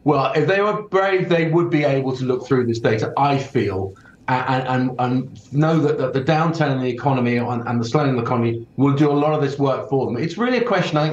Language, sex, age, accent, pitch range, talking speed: English, male, 40-59, British, 125-155 Hz, 250 wpm